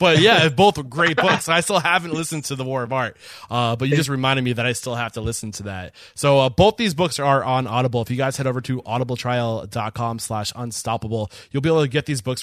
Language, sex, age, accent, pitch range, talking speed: English, male, 20-39, American, 110-145 Hz, 250 wpm